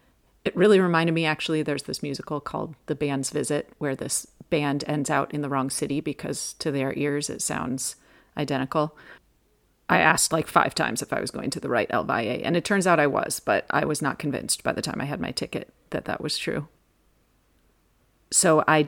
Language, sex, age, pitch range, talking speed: English, female, 40-59, 140-165 Hz, 205 wpm